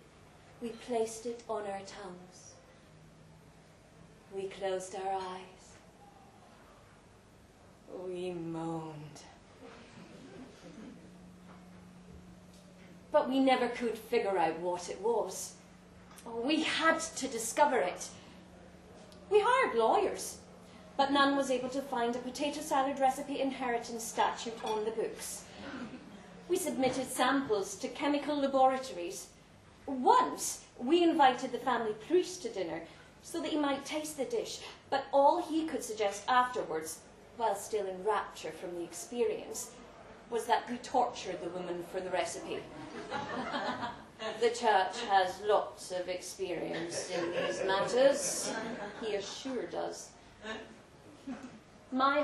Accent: British